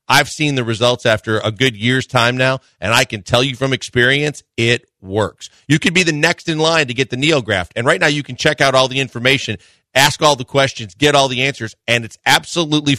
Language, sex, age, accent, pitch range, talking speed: English, male, 40-59, American, 110-145 Hz, 235 wpm